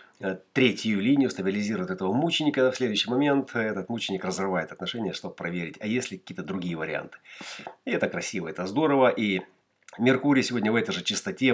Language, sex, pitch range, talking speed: Russian, male, 95-125 Hz, 165 wpm